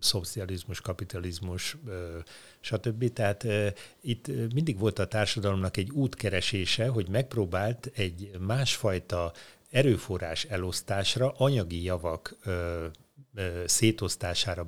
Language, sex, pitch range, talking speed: Hungarian, male, 90-115 Hz, 80 wpm